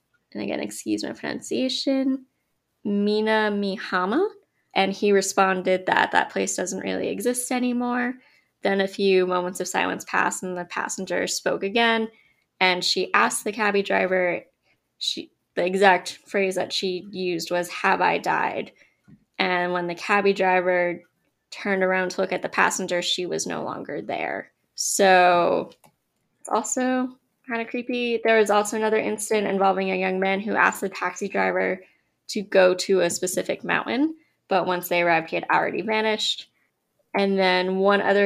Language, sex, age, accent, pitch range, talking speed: English, female, 20-39, American, 185-215 Hz, 155 wpm